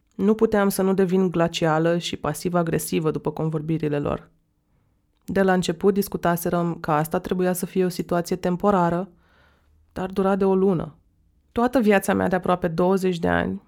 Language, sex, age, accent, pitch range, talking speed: Romanian, female, 20-39, native, 165-200 Hz, 160 wpm